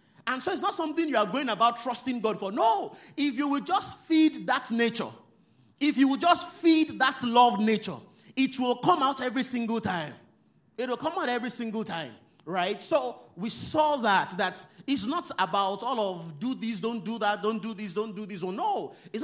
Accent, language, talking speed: Nigerian, English, 210 wpm